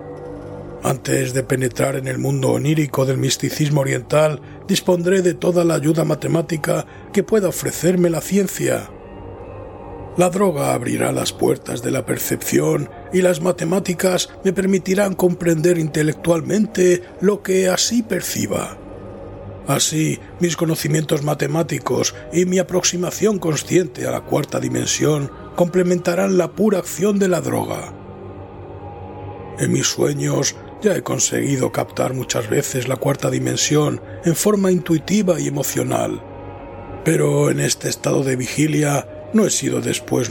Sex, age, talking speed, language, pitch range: male, 60-79, 130 wpm, Spanish, 125-180 Hz